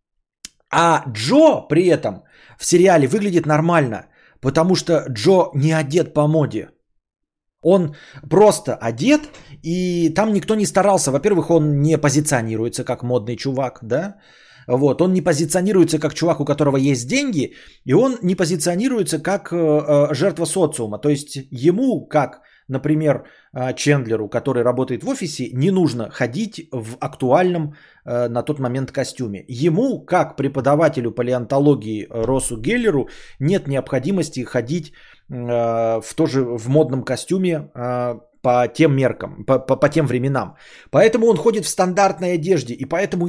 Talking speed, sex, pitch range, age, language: 135 wpm, male, 125-175 Hz, 20-39, Bulgarian